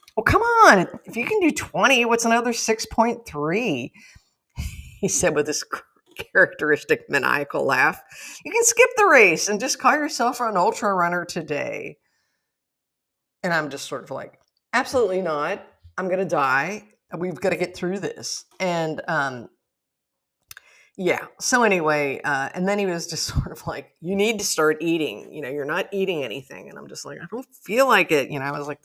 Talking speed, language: 185 wpm, English